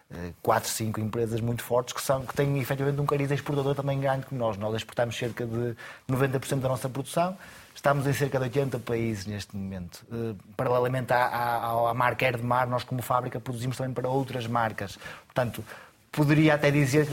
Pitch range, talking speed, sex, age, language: 120-145 Hz, 185 wpm, male, 20-39, Portuguese